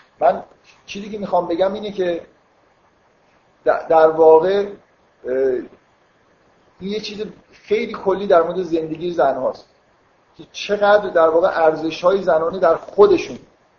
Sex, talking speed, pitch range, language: male, 115 wpm, 160-200 Hz, Persian